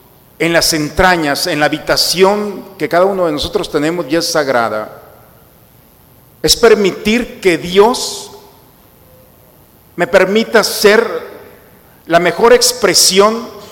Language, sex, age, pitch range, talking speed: Spanish, male, 50-69, 150-195 Hz, 110 wpm